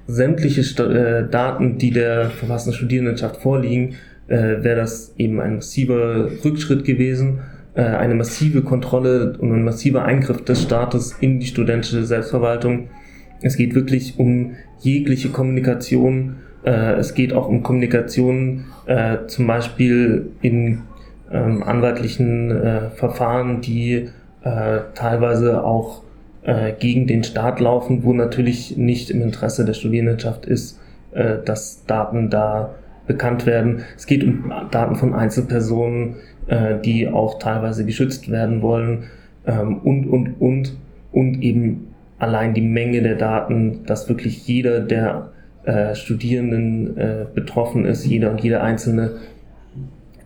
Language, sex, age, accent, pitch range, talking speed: German, male, 20-39, German, 115-125 Hz, 125 wpm